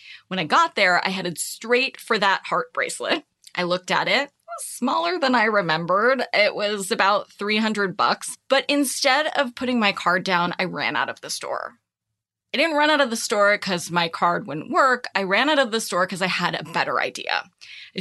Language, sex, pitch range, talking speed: English, female, 180-250 Hz, 215 wpm